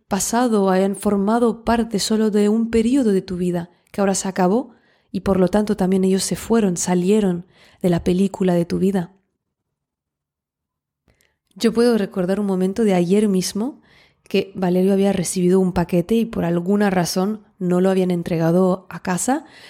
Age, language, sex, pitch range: 20-39, Spanish, female, 180-225 Hz